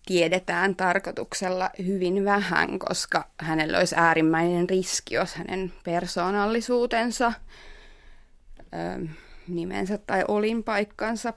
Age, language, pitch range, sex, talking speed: 30-49, Finnish, 175-210 Hz, female, 80 wpm